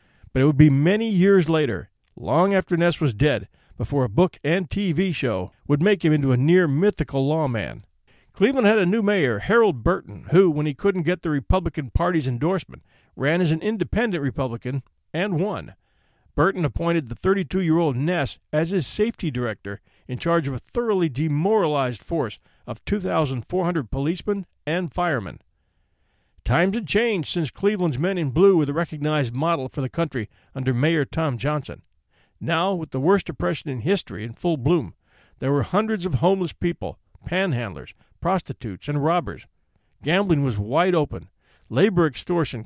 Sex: male